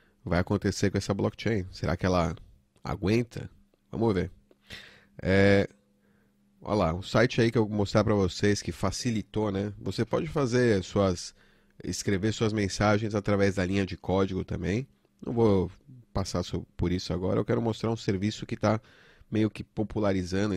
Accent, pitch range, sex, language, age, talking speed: Brazilian, 95-115 Hz, male, Portuguese, 30-49, 165 wpm